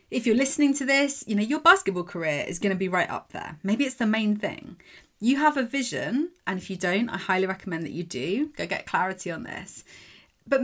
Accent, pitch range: British, 190-265 Hz